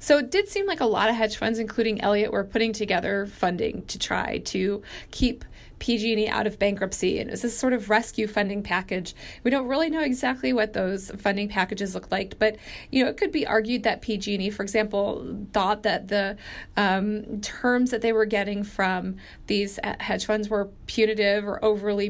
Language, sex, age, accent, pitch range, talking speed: English, female, 30-49, American, 200-230 Hz, 200 wpm